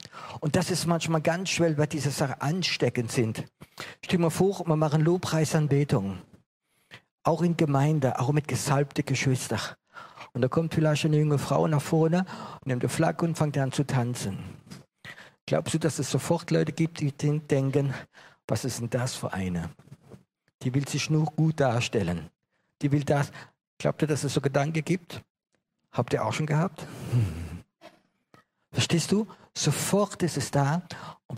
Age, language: 50-69, German